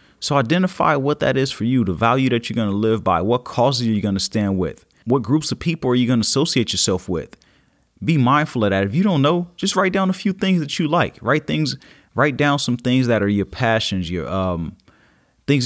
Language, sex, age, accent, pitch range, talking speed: English, male, 30-49, American, 105-135 Hz, 245 wpm